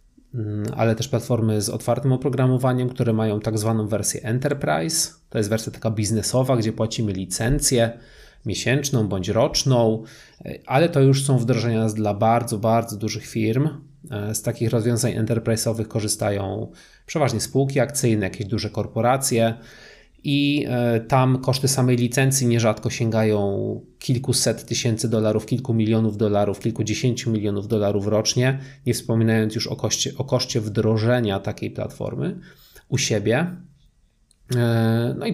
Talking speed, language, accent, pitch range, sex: 125 wpm, Polish, native, 110-130 Hz, male